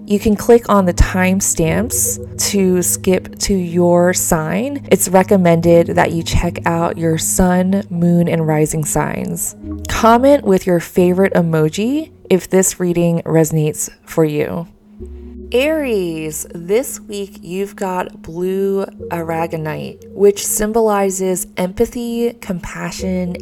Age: 20-39